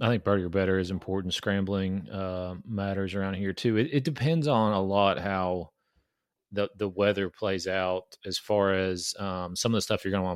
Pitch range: 90-105 Hz